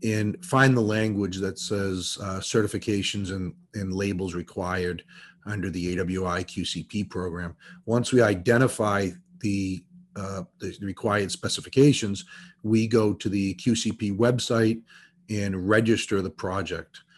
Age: 40-59